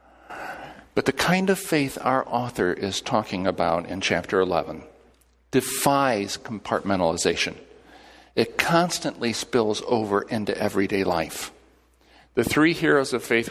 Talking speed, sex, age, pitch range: 120 wpm, male, 50-69, 95-135 Hz